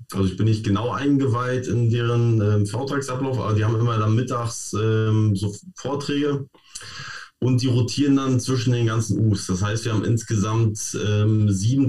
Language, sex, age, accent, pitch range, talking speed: German, male, 20-39, German, 105-125 Hz, 170 wpm